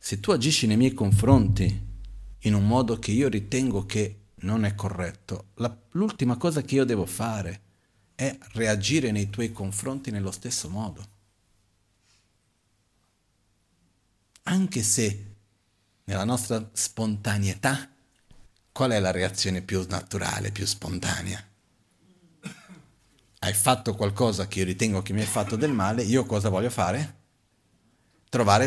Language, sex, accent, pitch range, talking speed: Italian, male, native, 95-120 Hz, 125 wpm